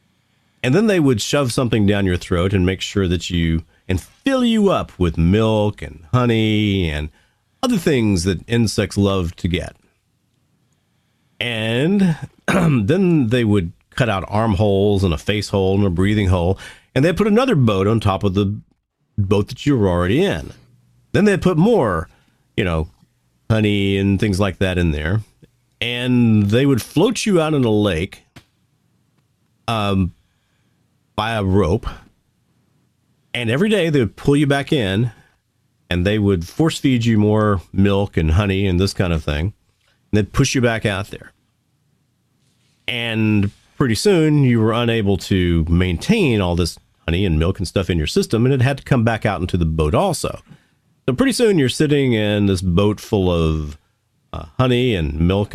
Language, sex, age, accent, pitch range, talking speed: English, male, 40-59, American, 95-125 Hz, 170 wpm